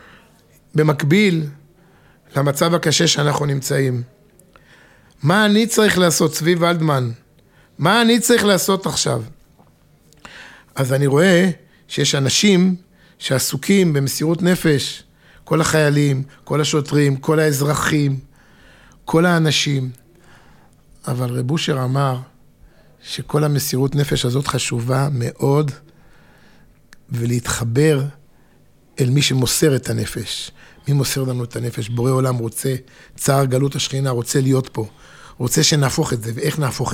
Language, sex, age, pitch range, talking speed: Hebrew, male, 50-69, 125-150 Hz, 110 wpm